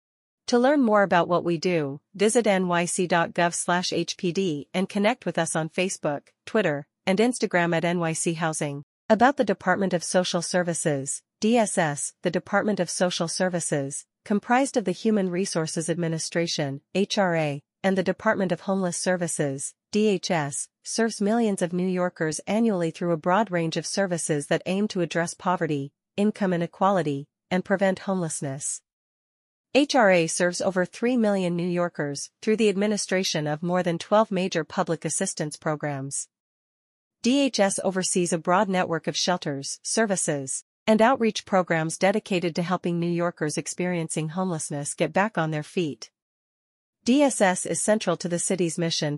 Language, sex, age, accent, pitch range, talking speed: English, female, 40-59, American, 165-195 Hz, 145 wpm